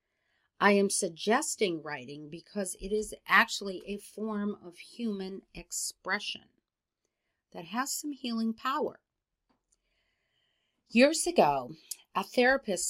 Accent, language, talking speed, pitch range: American, English, 100 wpm, 165-220 Hz